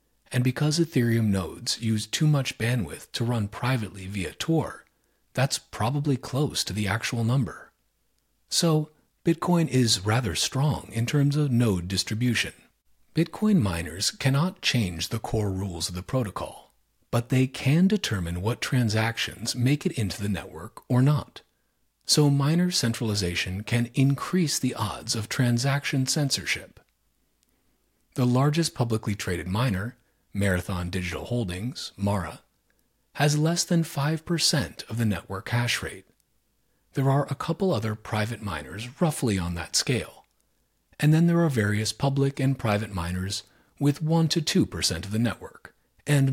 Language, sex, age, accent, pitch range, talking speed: English, male, 40-59, American, 100-145 Hz, 140 wpm